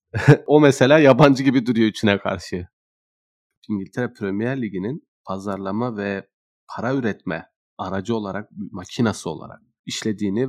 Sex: male